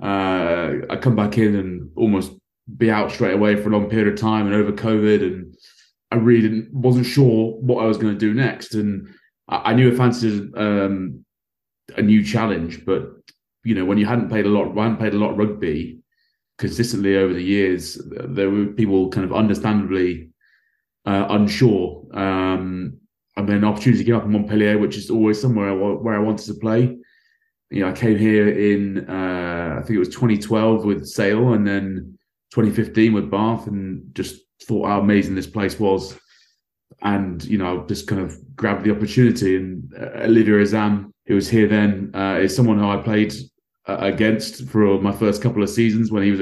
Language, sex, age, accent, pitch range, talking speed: English, male, 30-49, British, 100-110 Hz, 195 wpm